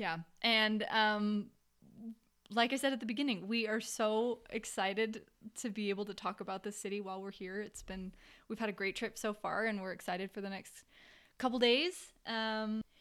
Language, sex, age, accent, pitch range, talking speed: English, female, 20-39, American, 195-245 Hz, 195 wpm